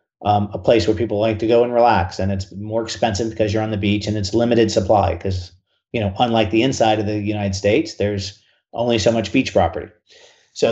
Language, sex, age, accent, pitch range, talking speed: English, male, 40-59, American, 100-120 Hz, 225 wpm